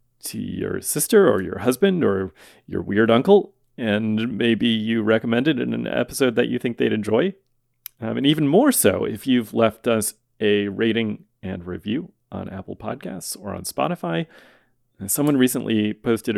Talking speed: 165 wpm